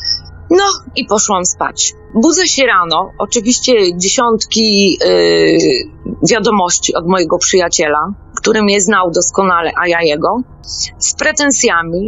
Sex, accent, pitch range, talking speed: female, native, 170-225 Hz, 110 wpm